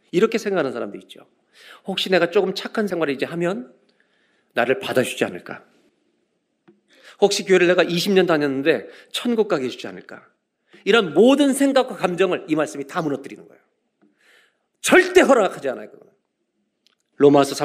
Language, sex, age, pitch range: Korean, male, 40-59, 180-295 Hz